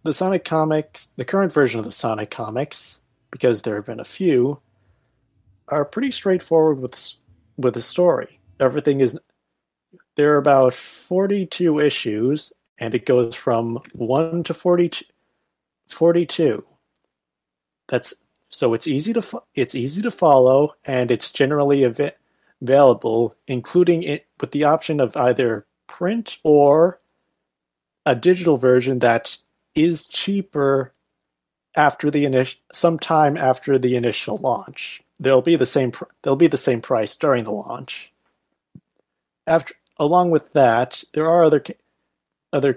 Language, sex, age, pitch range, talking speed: English, male, 30-49, 125-160 Hz, 135 wpm